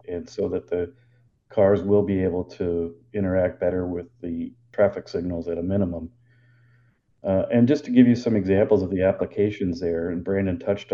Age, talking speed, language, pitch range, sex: 40-59, 180 wpm, English, 95-120 Hz, male